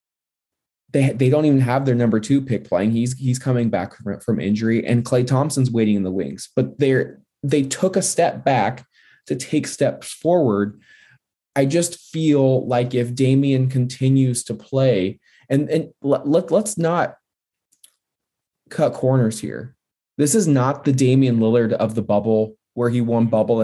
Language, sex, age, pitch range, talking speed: English, male, 20-39, 115-140 Hz, 170 wpm